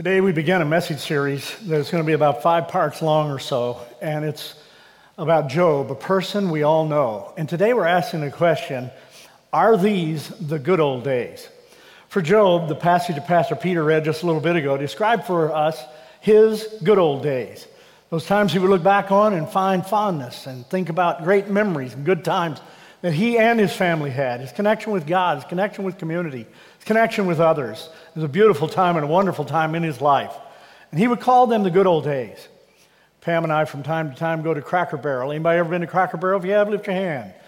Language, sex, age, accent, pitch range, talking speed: English, male, 50-69, American, 160-200 Hz, 220 wpm